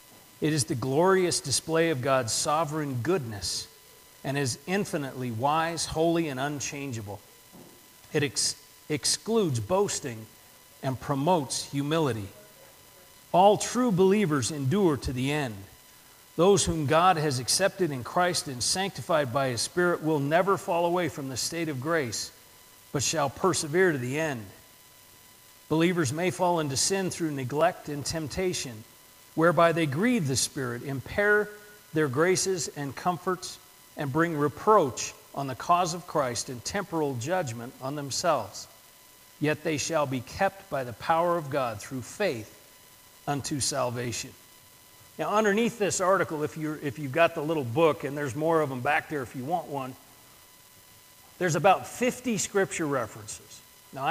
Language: English